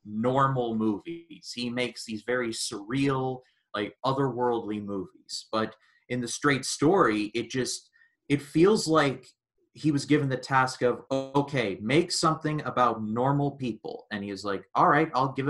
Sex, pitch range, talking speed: male, 110-135 Hz, 155 wpm